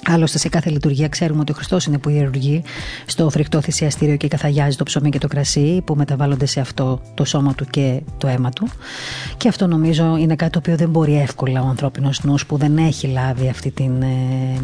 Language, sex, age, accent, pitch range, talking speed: Greek, female, 30-49, native, 130-155 Hz, 210 wpm